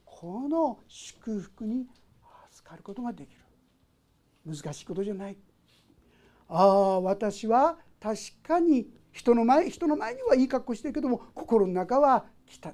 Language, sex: Japanese, male